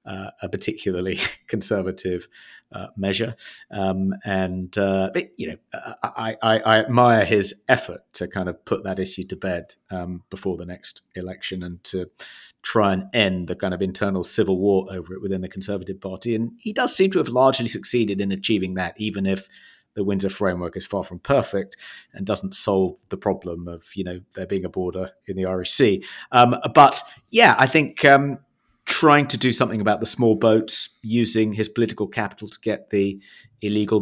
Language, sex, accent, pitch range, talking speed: English, male, British, 95-115 Hz, 185 wpm